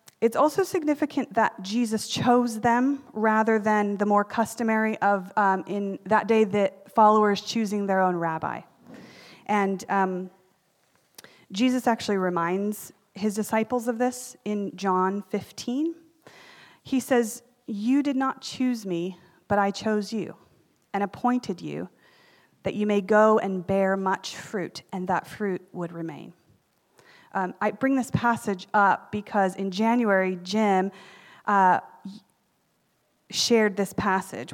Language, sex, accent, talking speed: English, female, American, 130 wpm